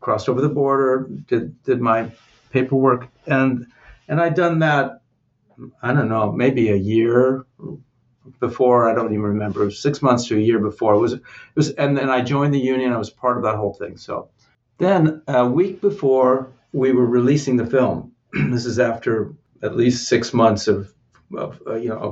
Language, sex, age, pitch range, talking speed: English, male, 50-69, 110-130 Hz, 195 wpm